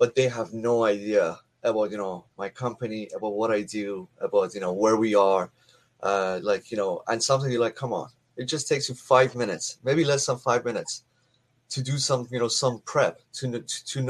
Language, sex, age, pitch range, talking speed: English, male, 30-49, 115-140 Hz, 210 wpm